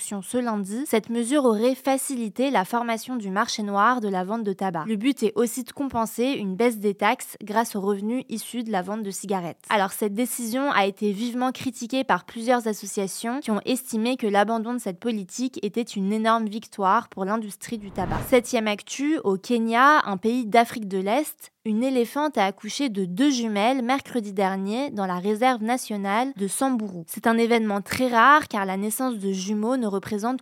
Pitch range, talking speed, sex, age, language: 200-245 Hz, 190 wpm, female, 20-39, French